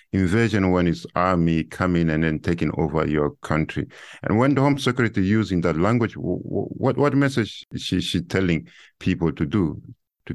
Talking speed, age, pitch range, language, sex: 175 wpm, 50-69, 85-110 Hz, English, male